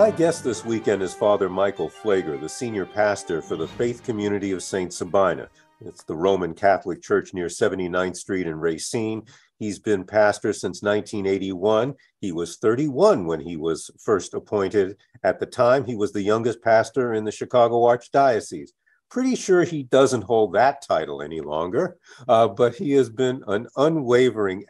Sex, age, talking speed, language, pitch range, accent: male, 50-69, 170 wpm, English, 95-120 Hz, American